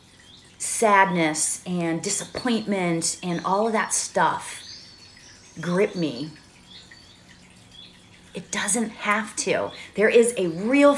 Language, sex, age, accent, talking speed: English, female, 40-59, American, 100 wpm